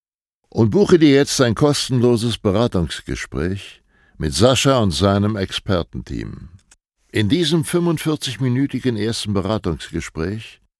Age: 60-79